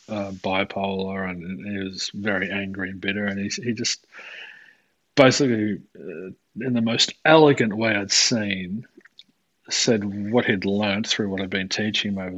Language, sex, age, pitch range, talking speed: English, male, 30-49, 95-110 Hz, 160 wpm